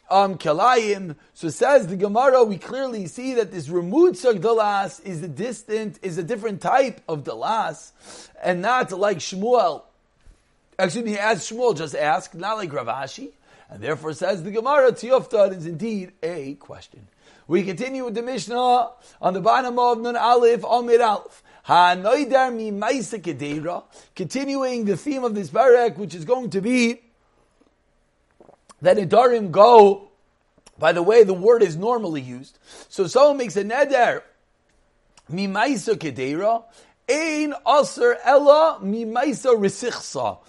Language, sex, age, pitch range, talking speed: English, male, 30-49, 190-255 Hz, 130 wpm